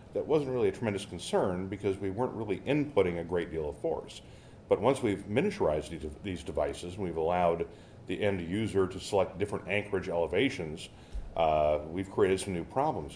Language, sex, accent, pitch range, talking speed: English, male, American, 85-105 Hz, 180 wpm